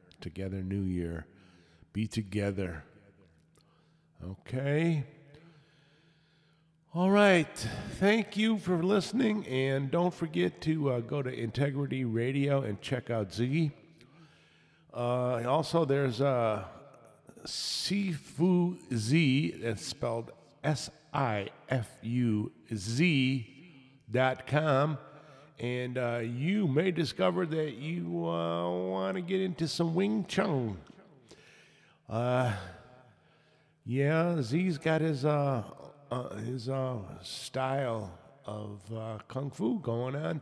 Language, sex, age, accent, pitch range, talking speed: English, male, 50-69, American, 115-160 Hz, 95 wpm